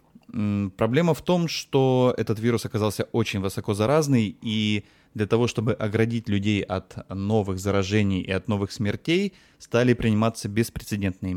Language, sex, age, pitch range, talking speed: Russian, male, 20-39, 100-130 Hz, 135 wpm